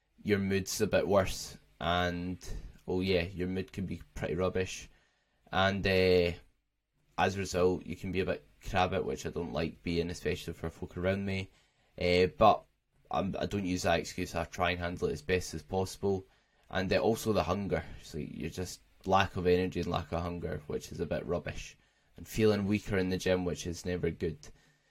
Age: 10-29